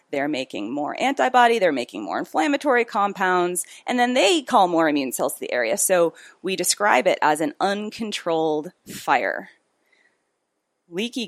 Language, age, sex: English, 30-49, female